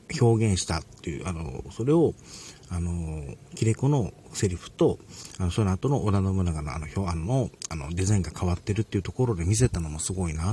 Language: Japanese